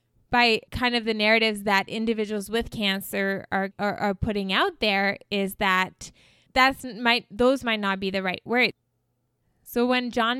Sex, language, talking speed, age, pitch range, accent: female, English, 165 wpm, 20-39, 195-230 Hz, American